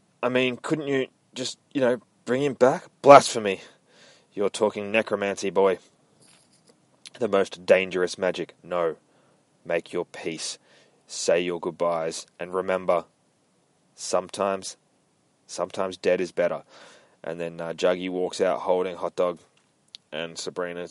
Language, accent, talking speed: English, Australian, 125 wpm